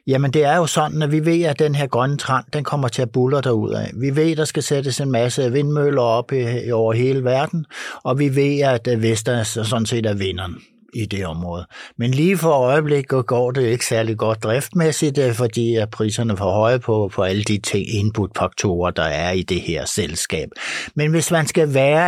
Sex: male